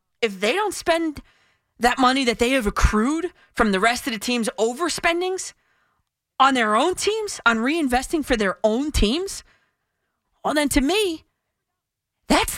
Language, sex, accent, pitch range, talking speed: English, female, American, 185-305 Hz, 155 wpm